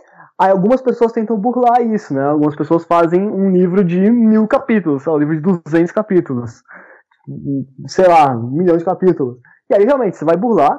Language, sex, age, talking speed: Portuguese, male, 20-39, 185 wpm